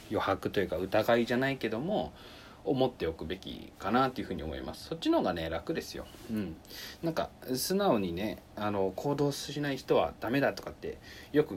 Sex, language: male, Japanese